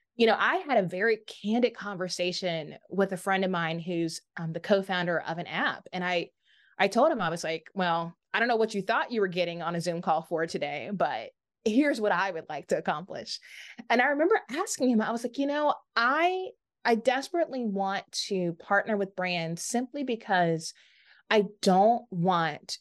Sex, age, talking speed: female, 20-39, 195 wpm